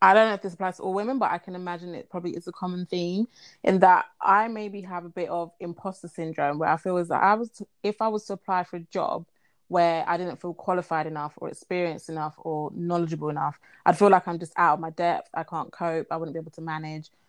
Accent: British